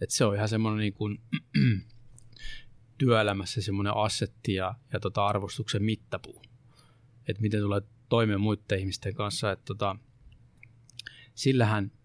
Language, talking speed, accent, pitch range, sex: Finnish, 120 wpm, native, 100-120 Hz, male